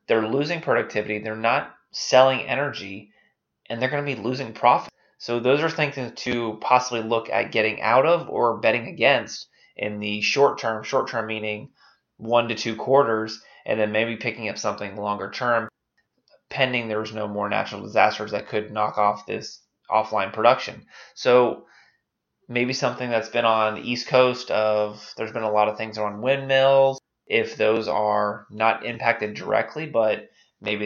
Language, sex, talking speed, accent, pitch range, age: English, male, 165 wpm, American, 105-130 Hz, 20-39